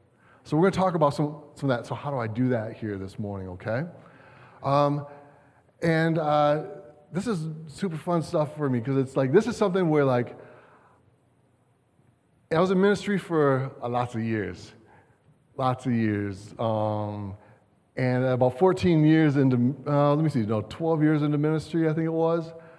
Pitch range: 125-155 Hz